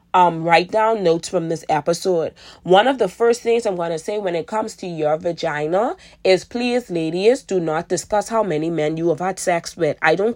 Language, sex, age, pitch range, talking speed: English, female, 20-39, 160-210 Hz, 220 wpm